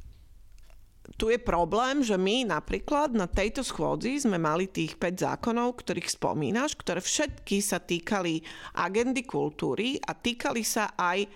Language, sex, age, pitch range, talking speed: Slovak, female, 40-59, 160-205 Hz, 135 wpm